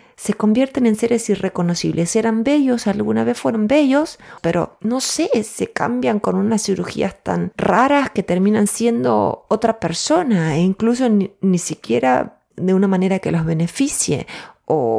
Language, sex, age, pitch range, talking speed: Spanish, female, 30-49, 155-205 Hz, 150 wpm